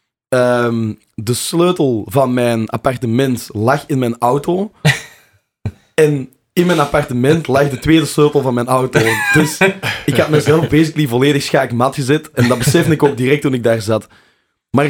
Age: 20-39